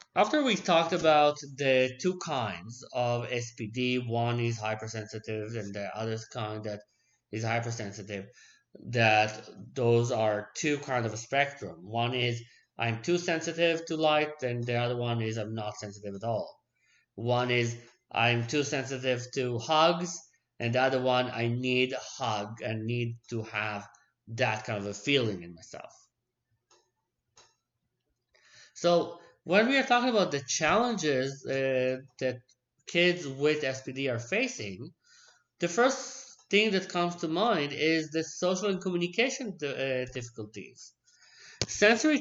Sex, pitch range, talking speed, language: male, 115-170 Hz, 145 wpm, English